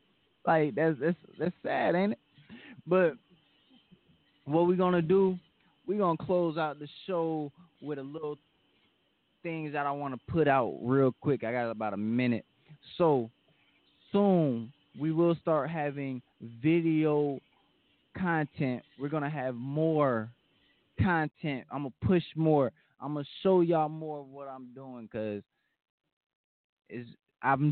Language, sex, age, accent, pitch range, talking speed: English, male, 20-39, American, 130-165 Hz, 150 wpm